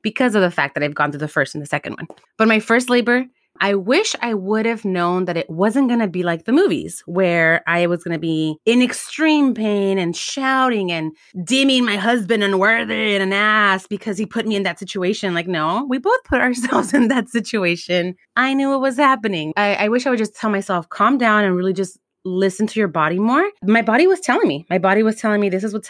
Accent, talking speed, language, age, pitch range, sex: American, 235 wpm, English, 30-49, 175-220 Hz, female